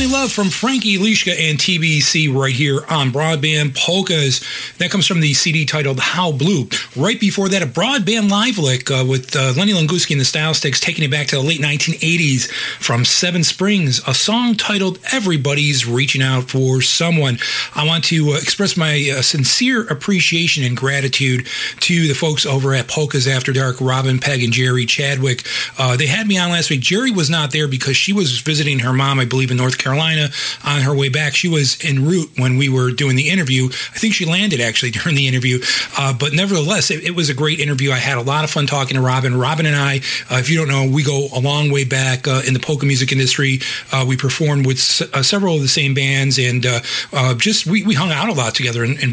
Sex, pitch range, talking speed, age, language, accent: male, 130-165 Hz, 225 wpm, 40-59, English, American